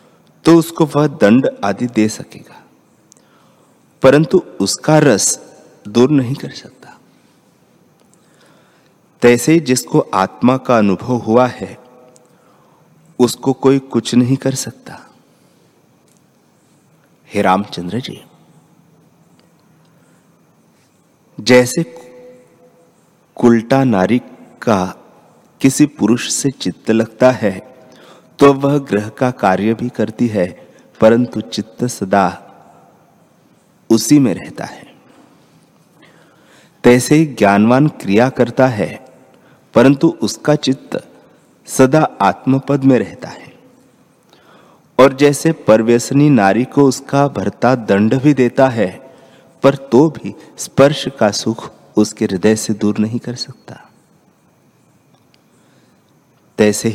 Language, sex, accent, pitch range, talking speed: Hindi, male, native, 110-140 Hz, 100 wpm